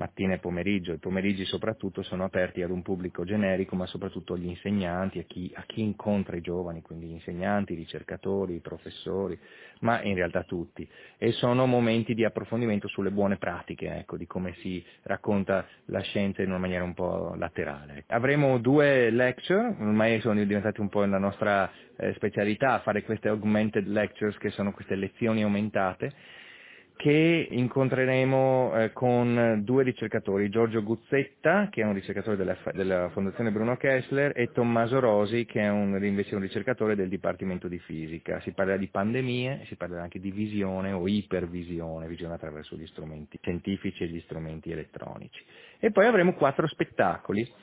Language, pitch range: Italian, 90-115 Hz